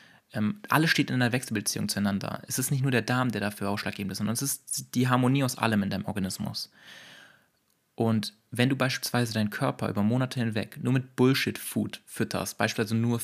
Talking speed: 190 wpm